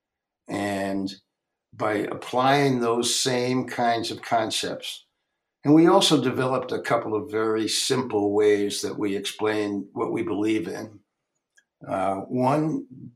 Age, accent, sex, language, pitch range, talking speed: 60-79, American, male, English, 100-130 Hz, 125 wpm